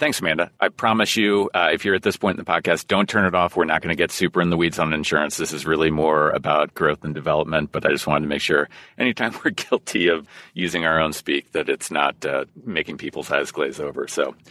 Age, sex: 40-59, male